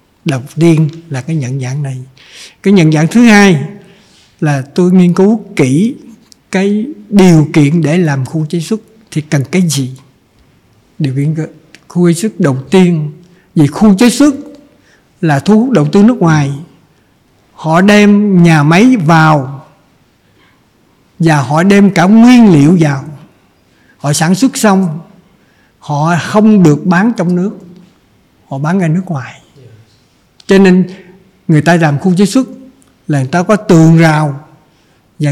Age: 60-79